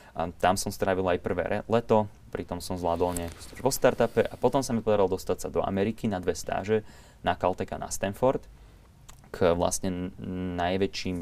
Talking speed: 170 wpm